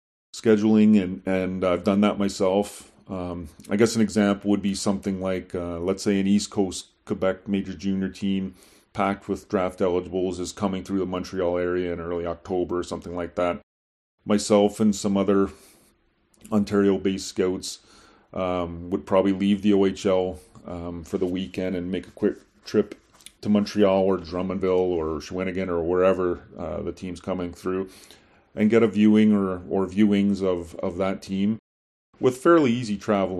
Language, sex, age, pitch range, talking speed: English, male, 30-49, 90-105 Hz, 165 wpm